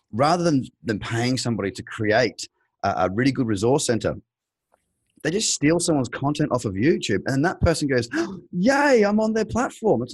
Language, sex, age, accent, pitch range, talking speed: English, male, 30-49, Australian, 110-150 Hz, 190 wpm